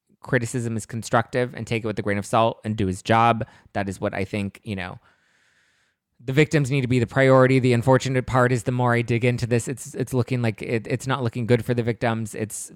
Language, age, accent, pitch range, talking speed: English, 20-39, American, 105-125 Hz, 240 wpm